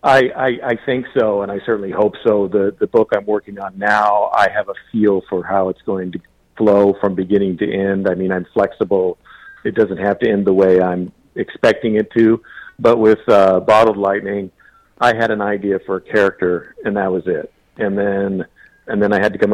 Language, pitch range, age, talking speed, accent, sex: English, 95-110 Hz, 50-69, 215 wpm, American, male